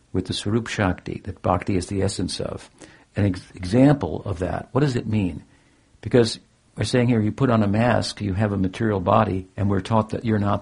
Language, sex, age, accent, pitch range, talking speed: English, male, 60-79, American, 105-130 Hz, 220 wpm